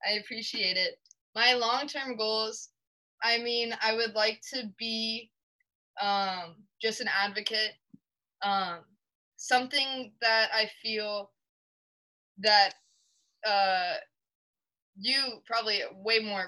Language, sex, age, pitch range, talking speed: English, female, 20-39, 195-230 Hz, 100 wpm